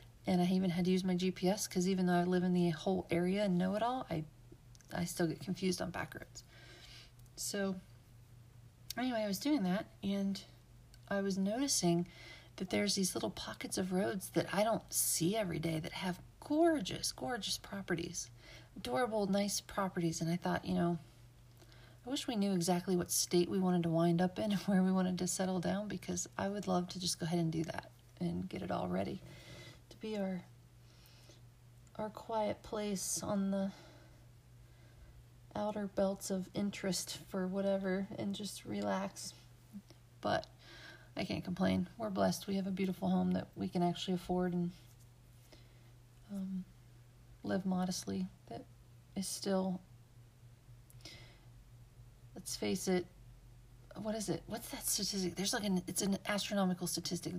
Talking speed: 165 wpm